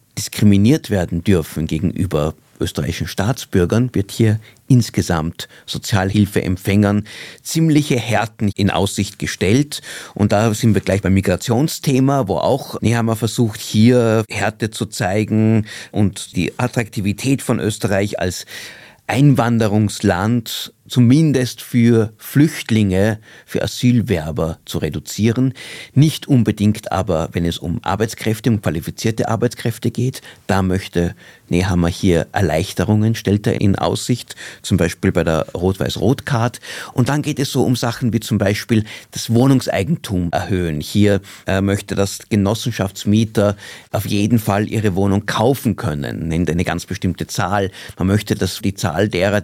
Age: 50-69